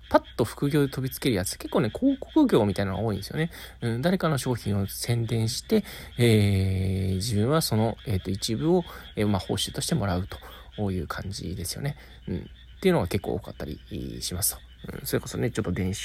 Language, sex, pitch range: Japanese, male, 100-155 Hz